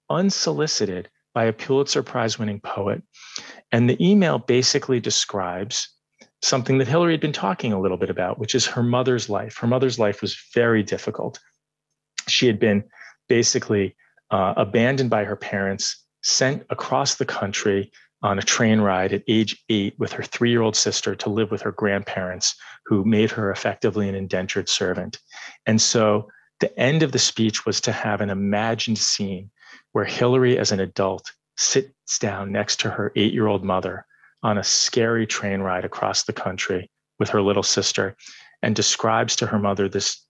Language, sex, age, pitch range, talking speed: English, male, 40-59, 100-120 Hz, 165 wpm